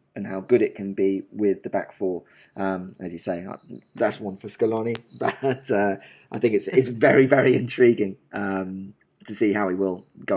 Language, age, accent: English, 20-39, British